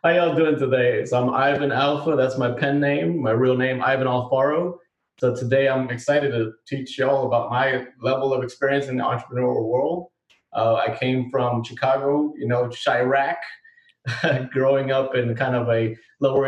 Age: 20-39